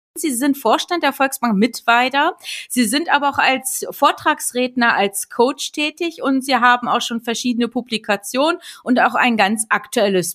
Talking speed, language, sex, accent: 155 wpm, German, female, German